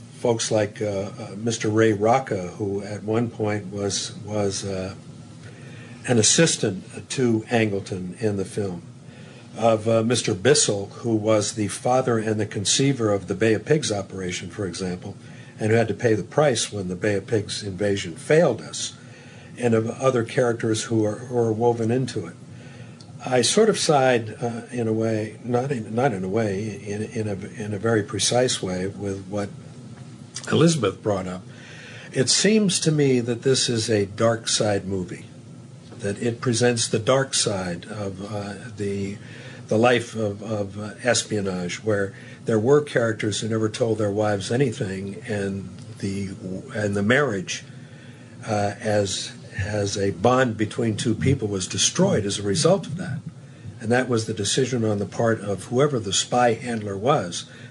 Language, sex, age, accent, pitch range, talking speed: English, male, 50-69, American, 100-125 Hz, 170 wpm